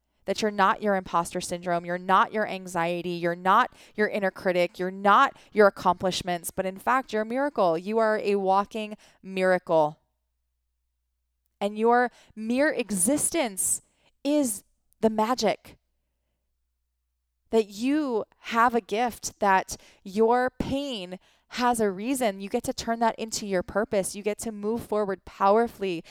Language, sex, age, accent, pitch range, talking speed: English, female, 20-39, American, 180-230 Hz, 145 wpm